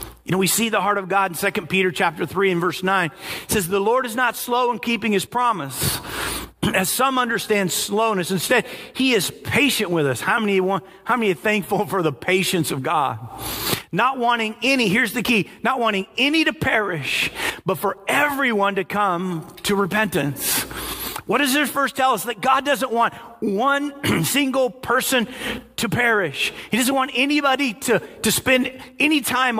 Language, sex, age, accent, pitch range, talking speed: English, male, 40-59, American, 195-245 Hz, 185 wpm